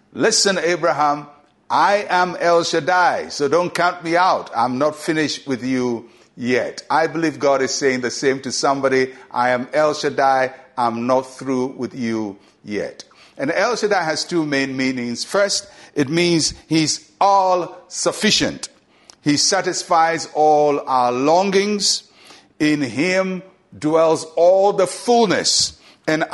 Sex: male